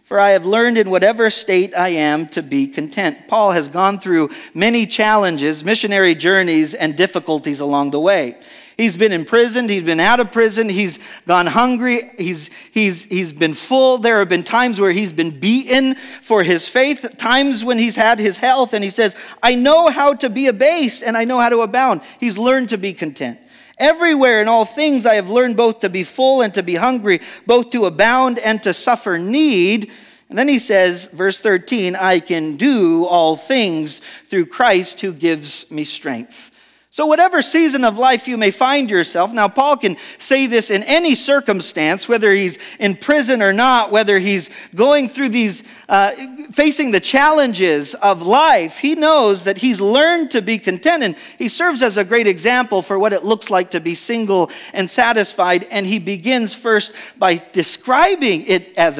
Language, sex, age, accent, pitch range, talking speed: English, male, 40-59, American, 180-255 Hz, 185 wpm